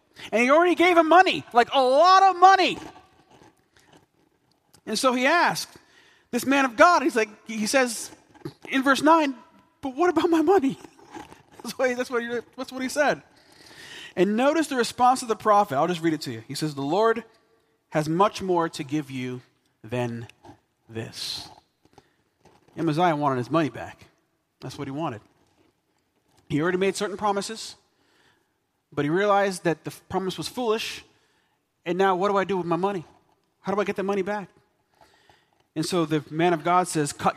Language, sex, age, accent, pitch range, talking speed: English, male, 40-59, American, 155-245 Hz, 180 wpm